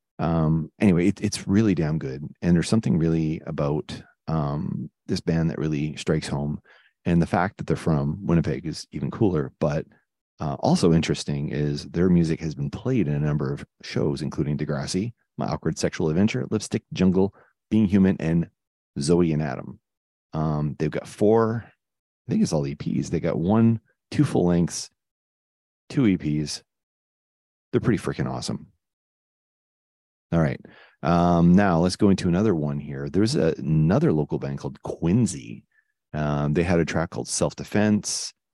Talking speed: 160 wpm